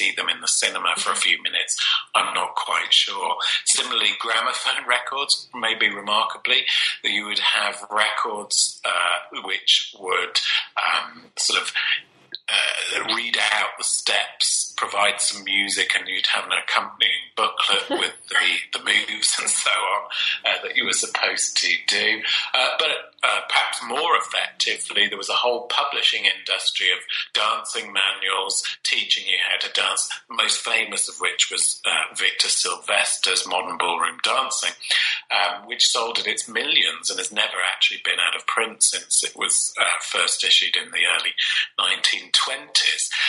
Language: English